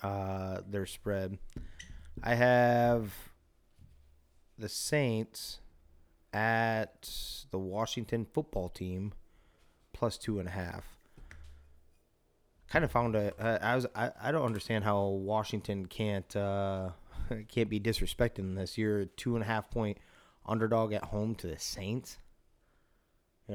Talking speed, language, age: 125 wpm, English, 30-49